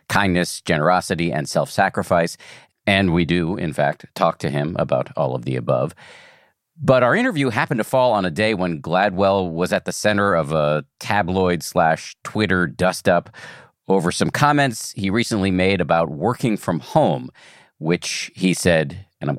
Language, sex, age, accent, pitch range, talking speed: English, male, 50-69, American, 90-120 Hz, 165 wpm